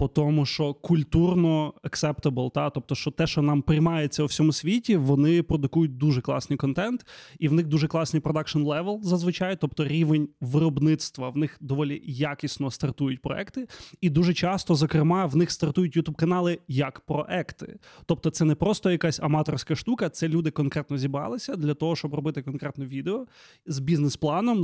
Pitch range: 145-170 Hz